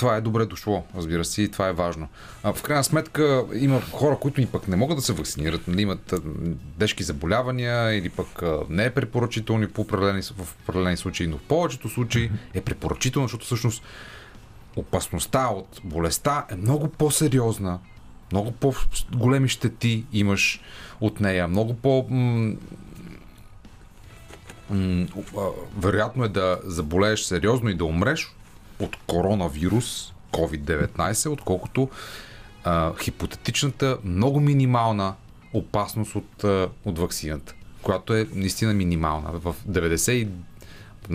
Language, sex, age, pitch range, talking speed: Bulgarian, male, 30-49, 90-115 Hz, 120 wpm